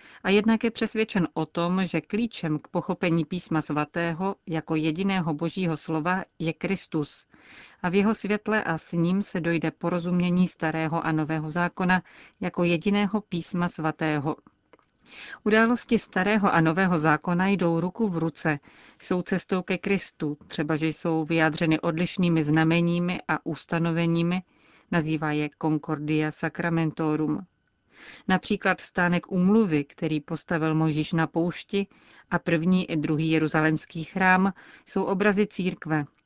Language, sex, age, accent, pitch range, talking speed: Czech, female, 40-59, native, 160-185 Hz, 130 wpm